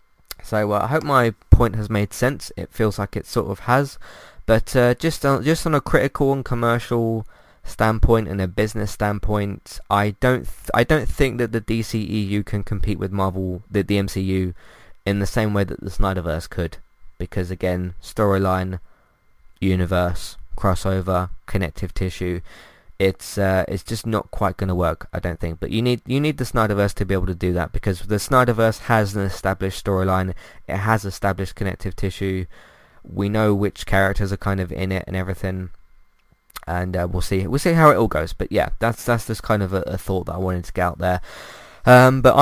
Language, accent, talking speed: English, British, 200 wpm